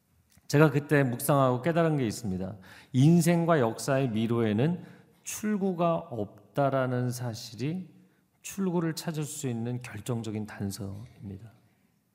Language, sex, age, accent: Korean, male, 40-59, native